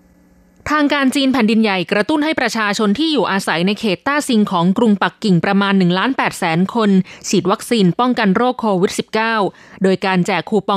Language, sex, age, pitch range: Thai, female, 20-39, 190-240 Hz